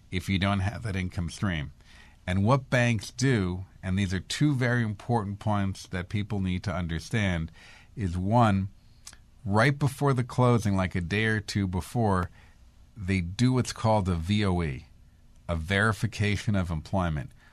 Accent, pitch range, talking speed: American, 95-115 Hz, 155 wpm